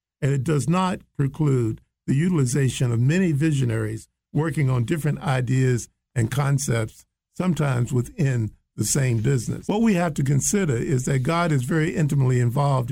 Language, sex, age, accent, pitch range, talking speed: English, male, 50-69, American, 125-155 Hz, 155 wpm